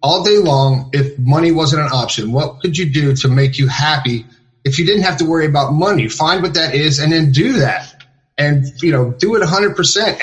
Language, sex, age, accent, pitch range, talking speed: English, male, 30-49, American, 135-160 Hz, 225 wpm